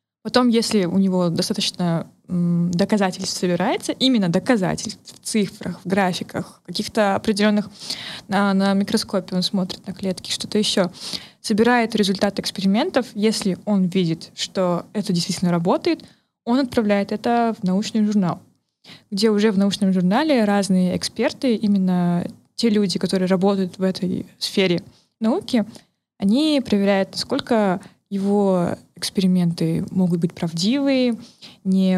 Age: 20-39